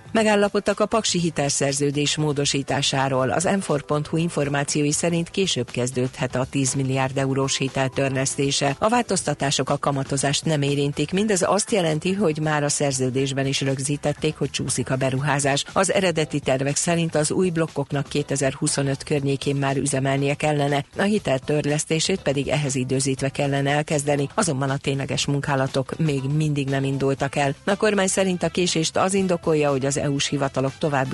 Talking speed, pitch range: 150 wpm, 135-155 Hz